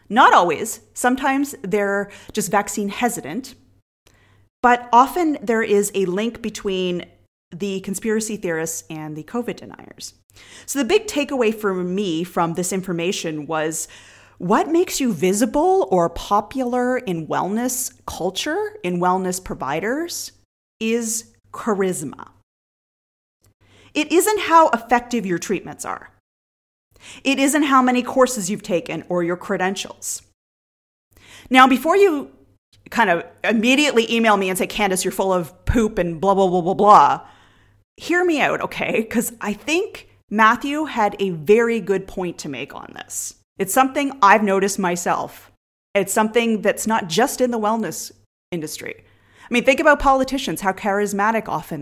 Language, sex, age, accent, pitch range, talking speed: English, female, 30-49, American, 180-245 Hz, 140 wpm